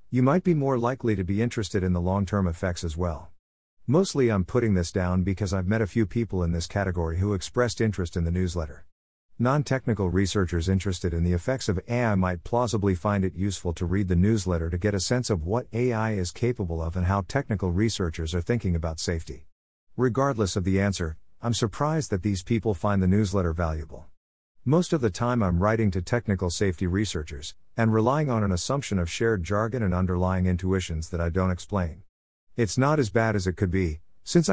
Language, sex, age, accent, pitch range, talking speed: English, male, 50-69, American, 90-115 Hz, 200 wpm